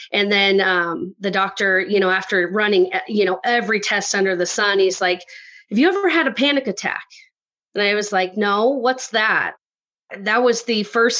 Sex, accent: female, American